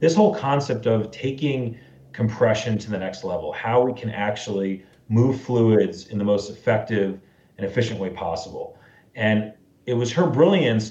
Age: 40-59